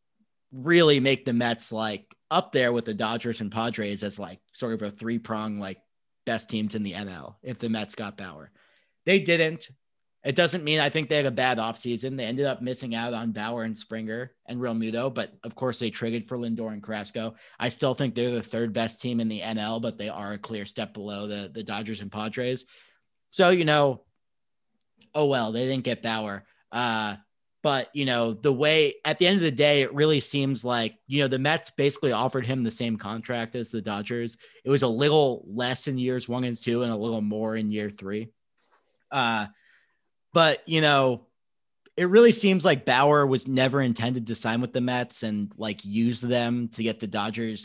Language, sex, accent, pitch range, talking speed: English, male, American, 110-130 Hz, 210 wpm